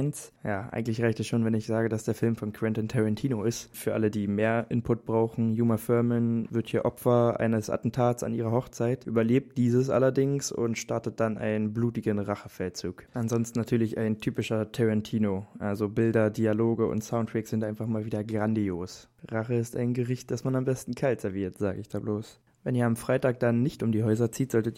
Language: German